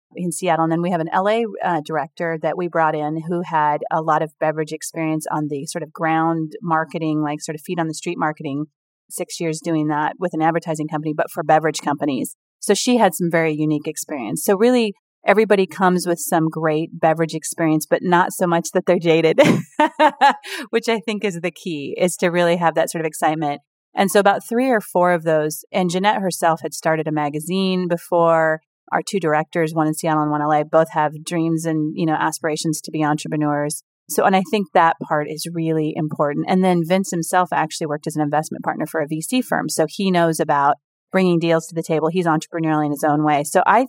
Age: 30-49